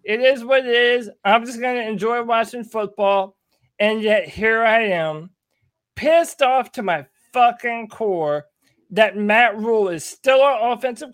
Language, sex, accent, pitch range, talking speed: English, male, American, 205-270 Hz, 160 wpm